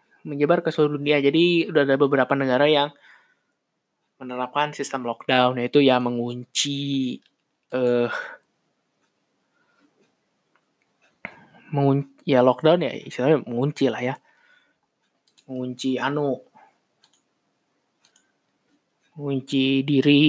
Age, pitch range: 20-39, 135-150 Hz